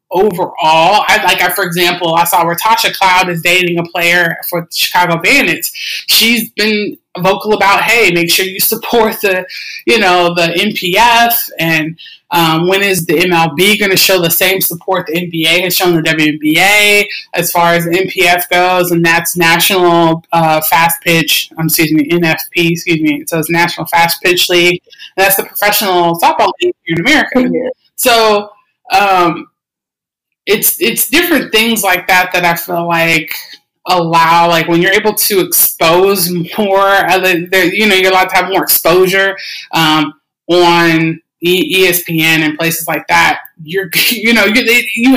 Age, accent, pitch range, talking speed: 20-39, American, 170-205 Hz, 165 wpm